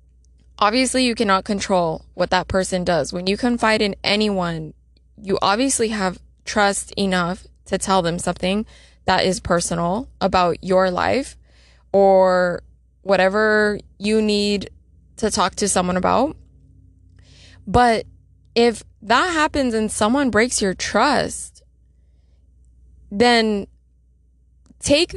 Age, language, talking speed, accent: 20-39, English, 115 wpm, American